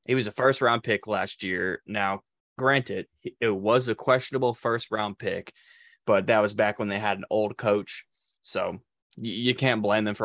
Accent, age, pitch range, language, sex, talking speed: American, 20-39, 100-130 Hz, English, male, 180 wpm